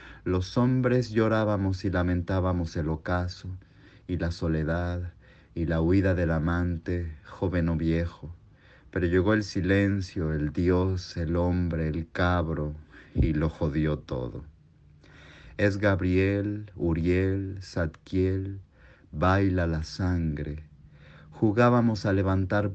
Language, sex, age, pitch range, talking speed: Spanish, male, 50-69, 80-100 Hz, 110 wpm